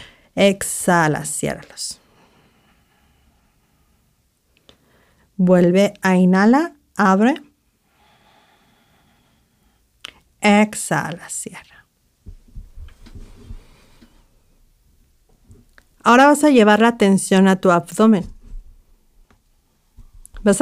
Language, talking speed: Spanish, 50 wpm